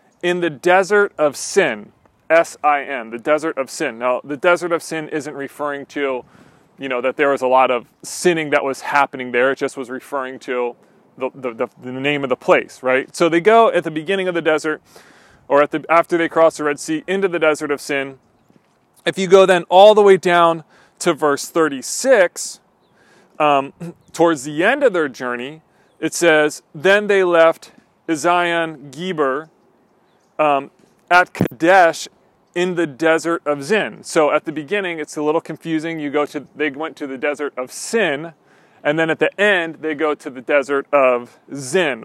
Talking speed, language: 185 wpm, English